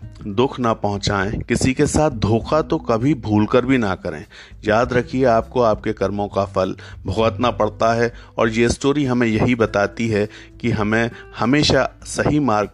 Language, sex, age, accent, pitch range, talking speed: Hindi, male, 50-69, native, 100-110 Hz, 165 wpm